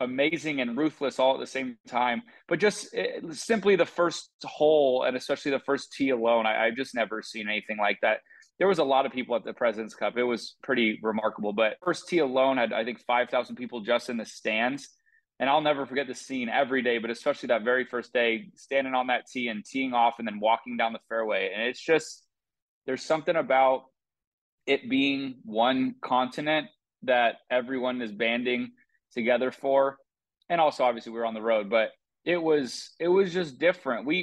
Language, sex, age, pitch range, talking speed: English, male, 20-39, 120-155 Hz, 200 wpm